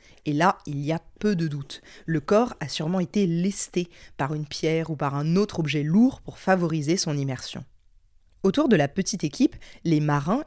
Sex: female